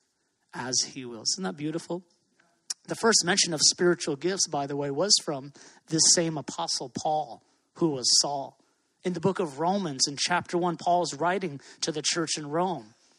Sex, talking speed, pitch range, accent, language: male, 180 wpm, 170-200 Hz, American, English